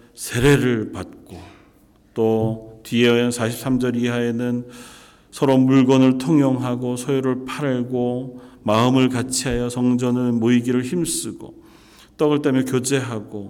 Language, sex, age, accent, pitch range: Korean, male, 40-59, native, 110-135 Hz